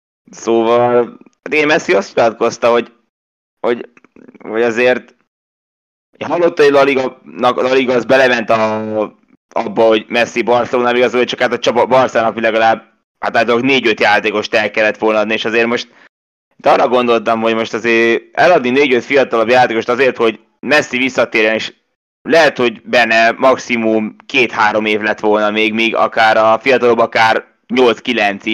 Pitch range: 110-125 Hz